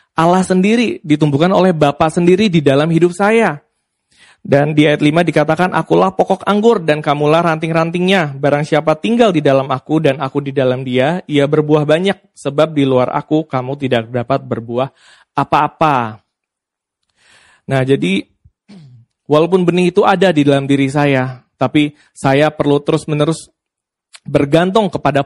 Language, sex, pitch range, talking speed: Indonesian, male, 140-170 Hz, 145 wpm